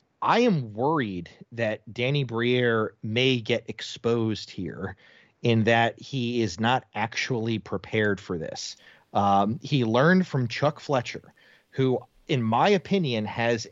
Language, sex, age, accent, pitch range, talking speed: English, male, 30-49, American, 110-145 Hz, 130 wpm